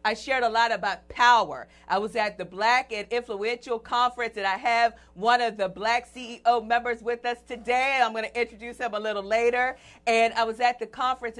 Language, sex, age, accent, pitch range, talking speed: English, female, 40-59, American, 215-260 Hz, 210 wpm